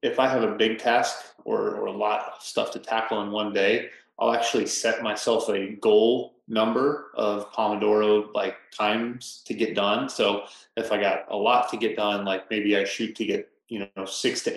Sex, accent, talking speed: male, American, 205 wpm